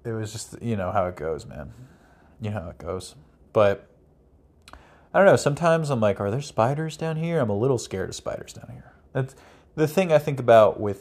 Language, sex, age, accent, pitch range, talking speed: English, male, 30-49, American, 75-110 Hz, 225 wpm